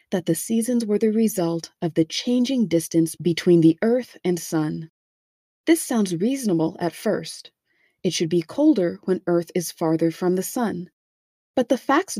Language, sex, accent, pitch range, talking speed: English, female, American, 165-230 Hz, 165 wpm